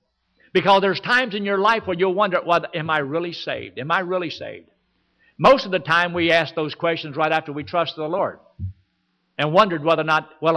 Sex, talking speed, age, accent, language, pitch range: male, 210 wpm, 60-79, American, English, 150-200 Hz